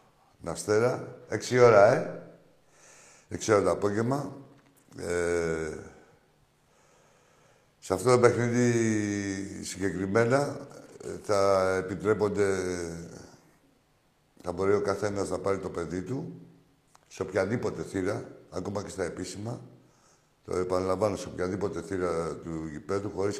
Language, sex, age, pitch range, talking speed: Greek, male, 60-79, 90-120 Hz, 105 wpm